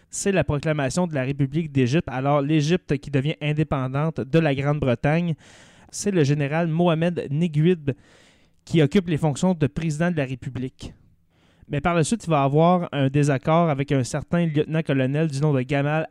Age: 20-39